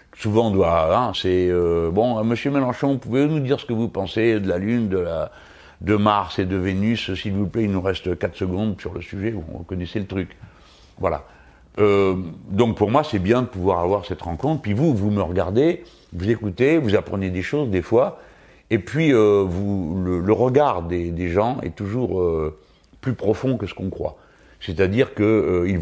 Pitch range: 85-110 Hz